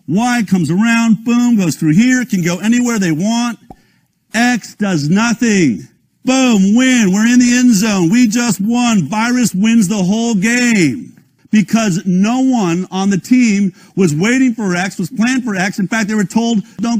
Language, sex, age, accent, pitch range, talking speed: English, male, 50-69, American, 170-230 Hz, 175 wpm